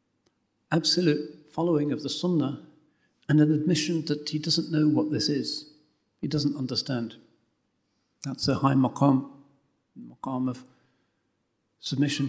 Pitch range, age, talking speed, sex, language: 140-160 Hz, 60-79, 125 wpm, male, English